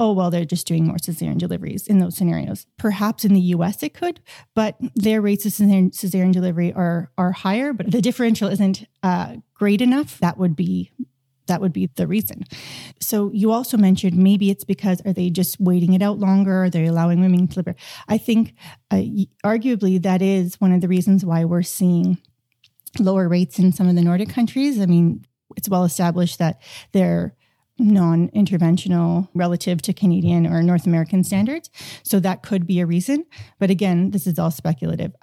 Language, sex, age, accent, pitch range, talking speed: English, female, 30-49, American, 175-210 Hz, 190 wpm